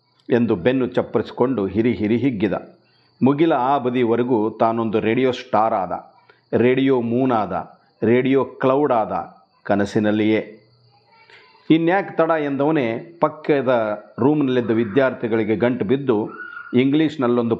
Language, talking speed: Kannada, 100 wpm